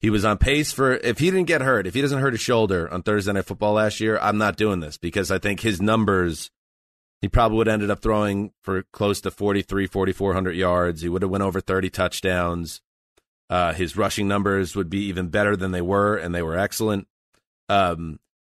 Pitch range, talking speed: 90-110 Hz, 225 wpm